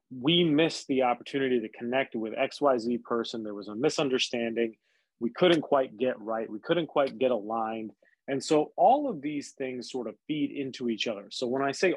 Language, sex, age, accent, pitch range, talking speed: English, male, 30-49, American, 115-140 Hz, 195 wpm